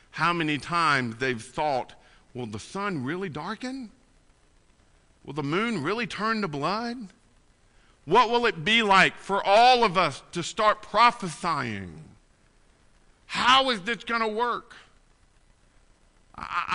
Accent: American